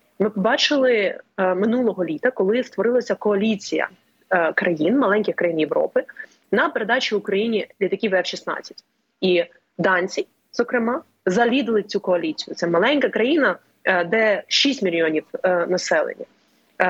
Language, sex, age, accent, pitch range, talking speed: Ukrainian, female, 20-39, native, 185-235 Hz, 130 wpm